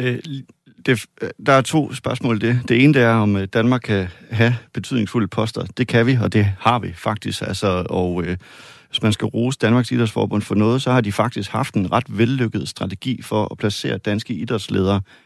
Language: Danish